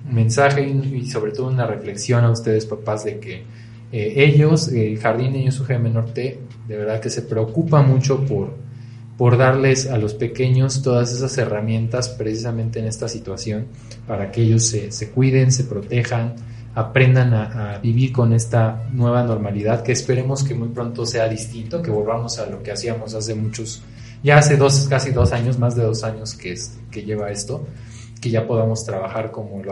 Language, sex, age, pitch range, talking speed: Spanish, male, 20-39, 110-130 Hz, 185 wpm